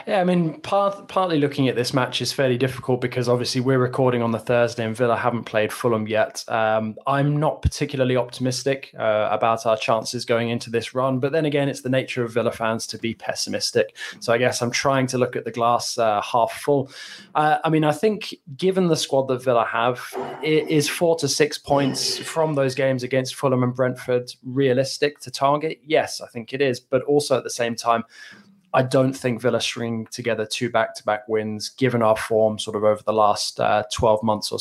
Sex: male